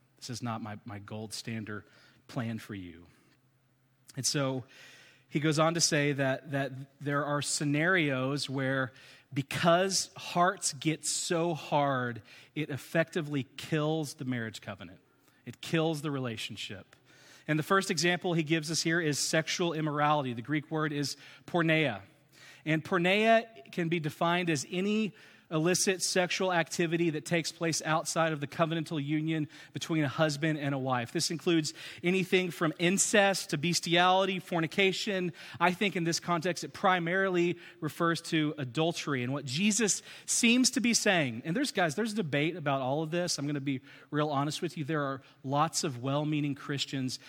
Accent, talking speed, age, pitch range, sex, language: American, 160 wpm, 40-59, 130-170 Hz, male, English